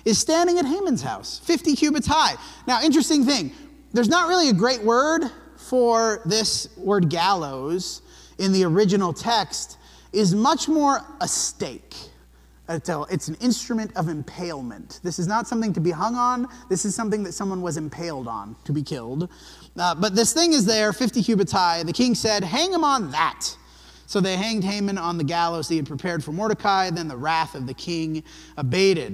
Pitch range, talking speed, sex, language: 170-245 Hz, 185 wpm, male, English